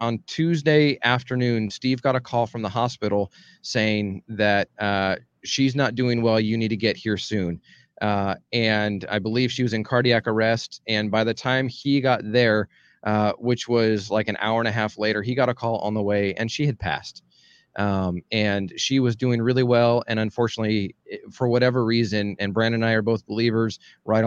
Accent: American